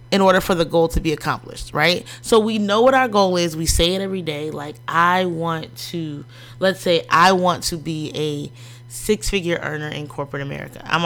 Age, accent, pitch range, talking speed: 30-49, American, 150-200 Hz, 205 wpm